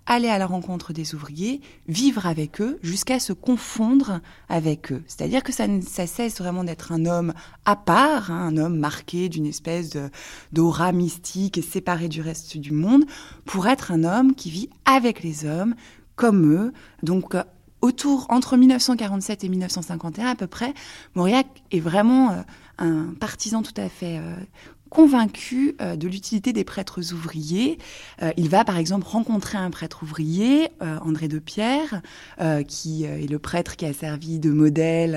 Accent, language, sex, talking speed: French, French, female, 170 wpm